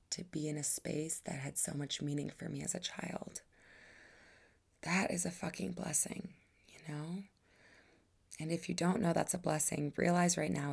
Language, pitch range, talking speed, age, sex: English, 145-175 Hz, 185 wpm, 20-39, female